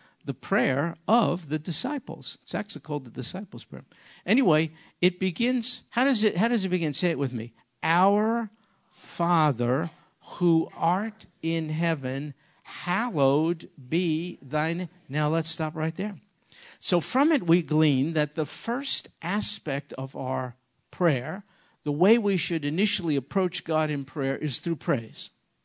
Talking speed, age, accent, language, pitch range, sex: 145 wpm, 50-69, American, English, 145-185 Hz, male